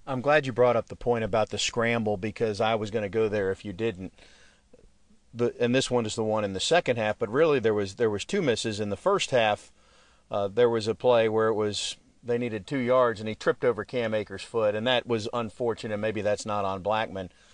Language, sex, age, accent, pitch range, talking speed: English, male, 40-59, American, 105-135 Hz, 245 wpm